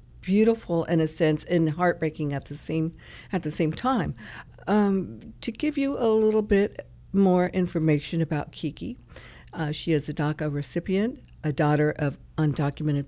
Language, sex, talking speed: English, female, 155 wpm